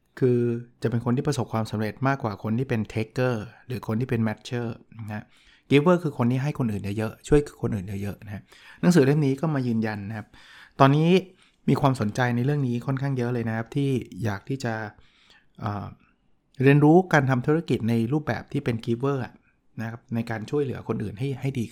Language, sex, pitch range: Thai, male, 115-140 Hz